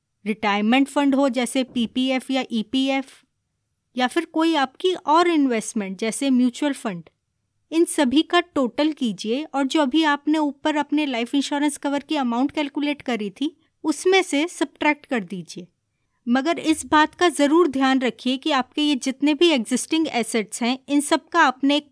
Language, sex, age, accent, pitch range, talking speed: Hindi, female, 20-39, native, 240-300 Hz, 160 wpm